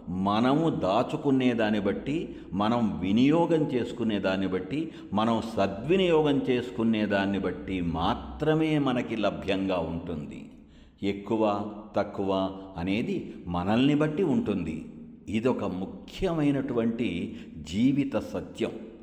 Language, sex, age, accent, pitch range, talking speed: Telugu, male, 60-79, native, 95-135 Hz, 80 wpm